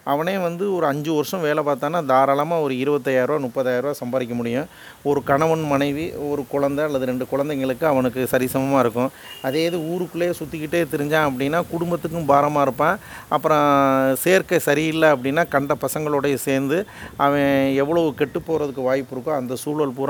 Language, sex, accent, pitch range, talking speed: Tamil, male, native, 130-155 Hz, 145 wpm